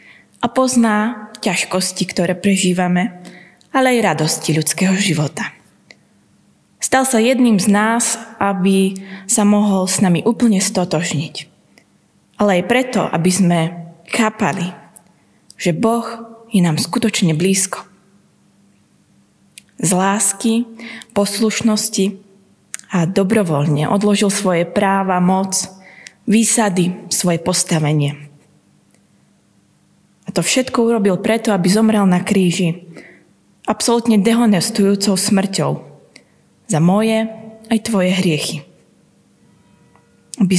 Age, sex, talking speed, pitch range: 20-39, female, 95 wpm, 180-220 Hz